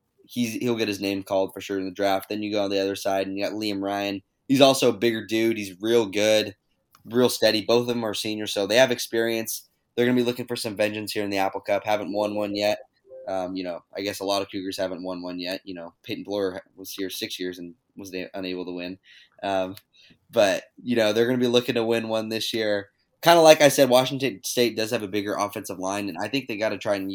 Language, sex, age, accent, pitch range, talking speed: English, male, 20-39, American, 100-125 Hz, 265 wpm